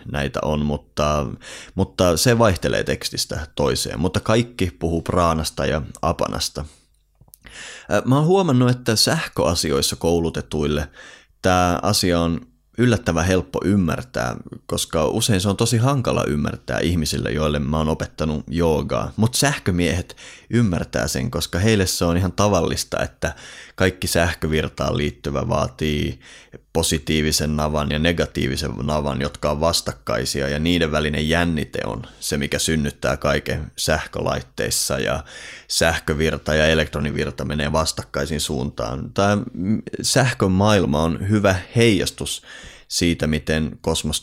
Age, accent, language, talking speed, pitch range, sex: 30-49, native, Finnish, 120 wpm, 75-95 Hz, male